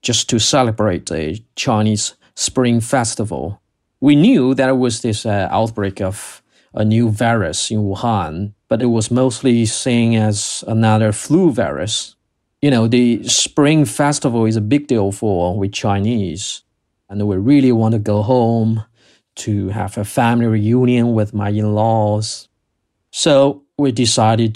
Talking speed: 145 wpm